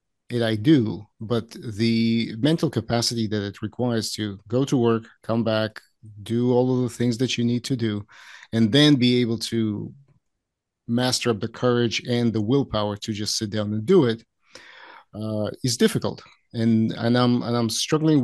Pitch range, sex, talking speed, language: 110-125 Hz, male, 180 wpm, English